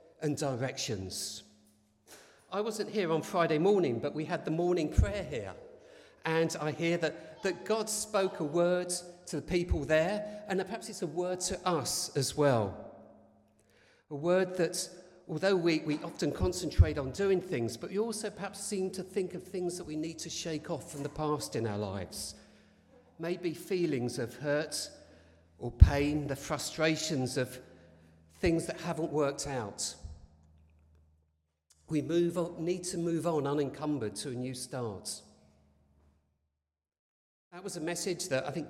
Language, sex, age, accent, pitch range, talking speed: English, male, 50-69, British, 125-180 Hz, 160 wpm